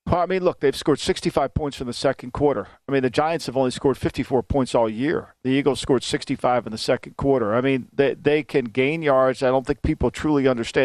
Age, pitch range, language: 50-69, 130-155 Hz, English